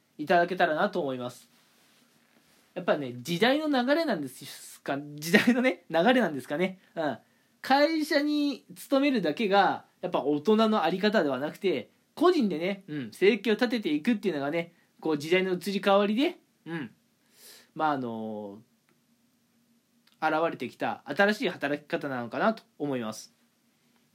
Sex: male